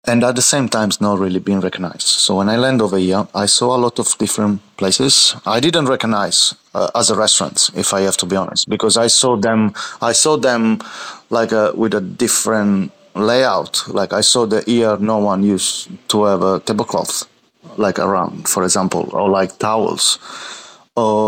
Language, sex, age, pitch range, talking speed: English, male, 30-49, 95-115 Hz, 190 wpm